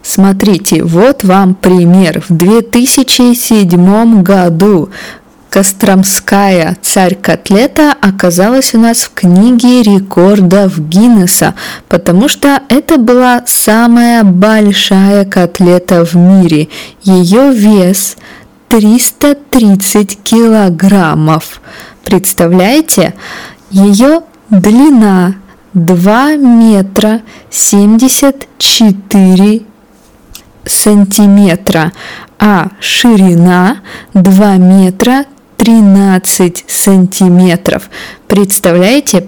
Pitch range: 185-230 Hz